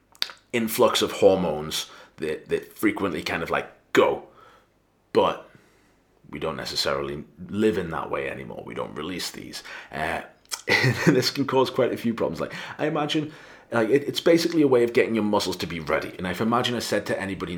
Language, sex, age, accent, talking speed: English, male, 30-49, British, 190 wpm